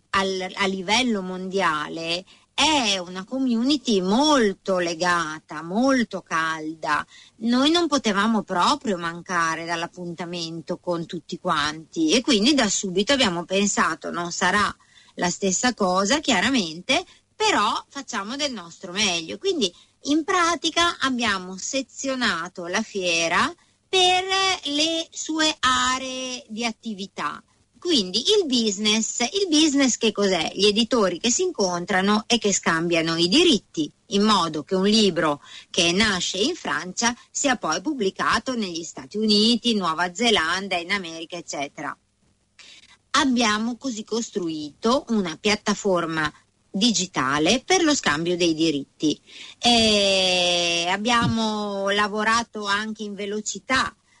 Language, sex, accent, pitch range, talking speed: Italian, female, native, 180-250 Hz, 115 wpm